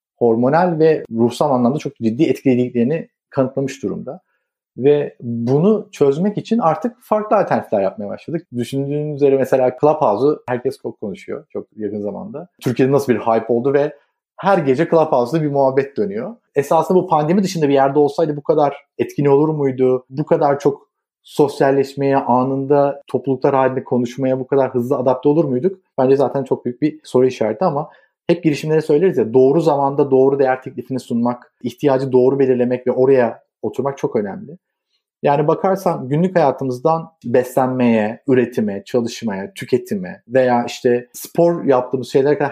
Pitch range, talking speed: 125-160 Hz, 150 wpm